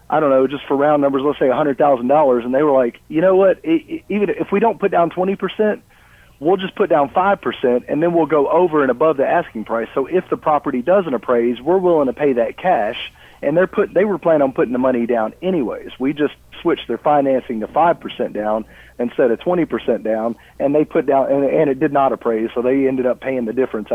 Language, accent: English, American